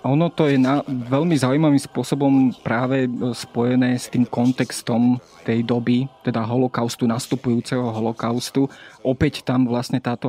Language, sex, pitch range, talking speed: Slovak, male, 125-145 Hz, 130 wpm